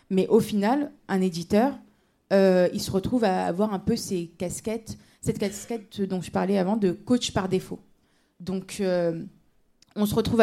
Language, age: French, 30-49